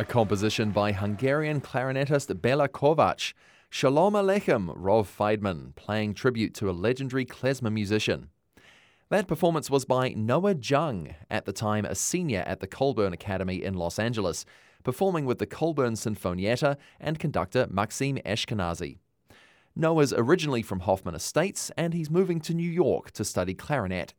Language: English